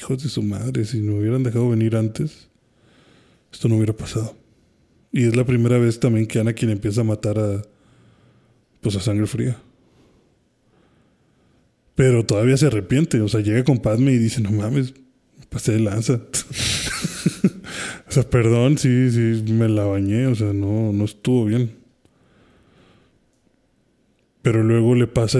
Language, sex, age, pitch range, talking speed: Spanish, male, 20-39, 110-125 Hz, 155 wpm